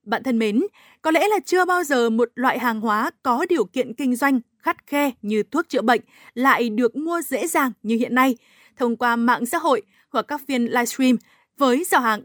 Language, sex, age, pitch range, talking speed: Vietnamese, female, 20-39, 230-300 Hz, 215 wpm